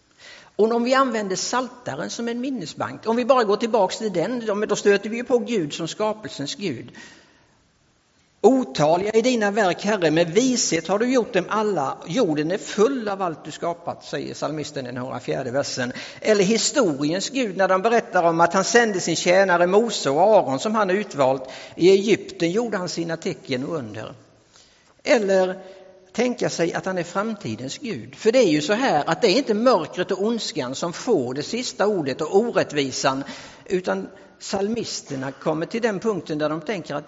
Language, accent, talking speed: English, Norwegian, 185 wpm